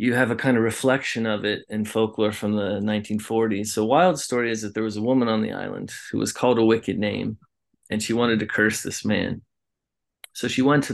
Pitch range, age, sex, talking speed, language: 105-115 Hz, 30-49, male, 230 wpm, English